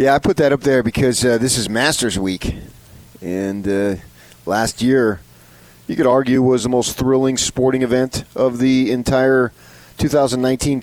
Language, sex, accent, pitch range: English, male, American, 95-120 Hz